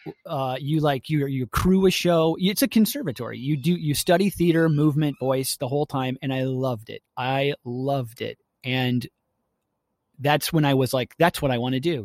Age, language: 30-49, English